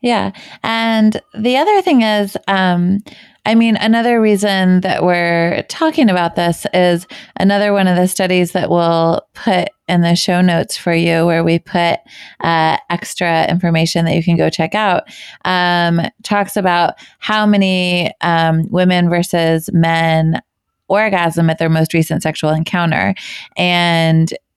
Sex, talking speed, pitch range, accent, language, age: female, 145 wpm, 165-185 Hz, American, English, 20-39